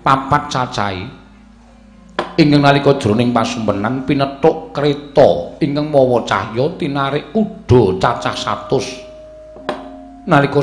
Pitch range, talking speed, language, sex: 120-150 Hz, 90 wpm, Indonesian, male